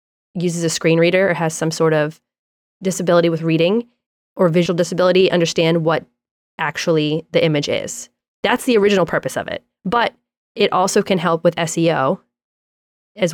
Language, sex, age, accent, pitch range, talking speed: English, female, 20-39, American, 160-200 Hz, 155 wpm